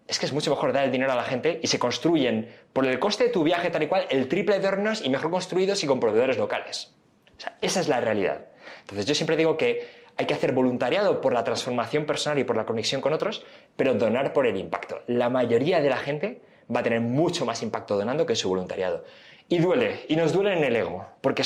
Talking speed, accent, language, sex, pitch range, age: 245 wpm, Spanish, Spanish, male, 140-230 Hz, 20-39